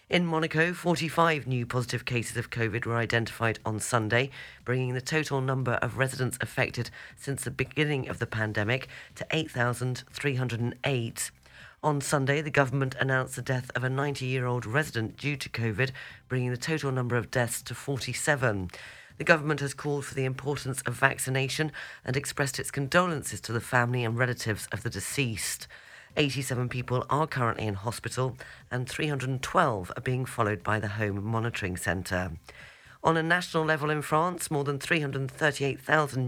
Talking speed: 155 wpm